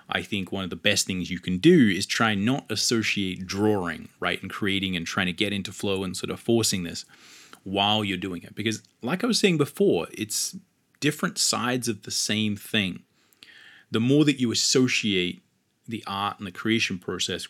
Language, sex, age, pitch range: English, male, 30-49, 90-115 Hz